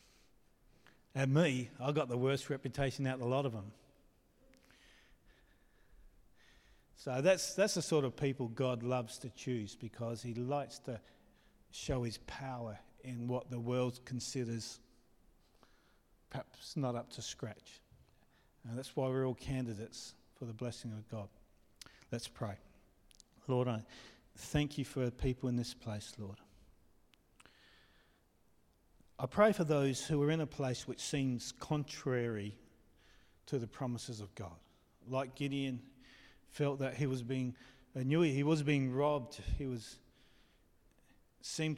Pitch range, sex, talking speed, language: 115-140 Hz, male, 140 wpm, English